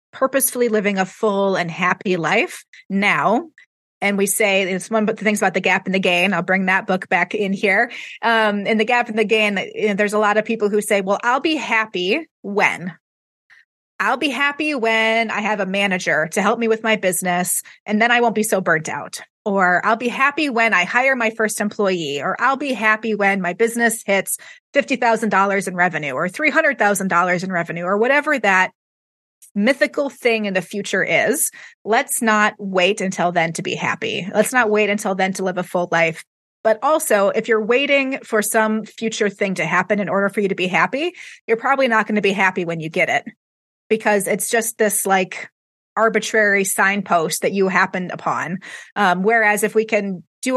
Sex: female